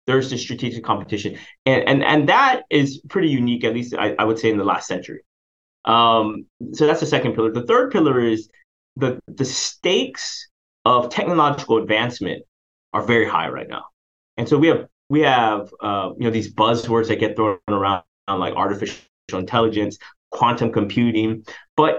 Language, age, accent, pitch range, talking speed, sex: English, 30-49, American, 110-150 Hz, 175 wpm, male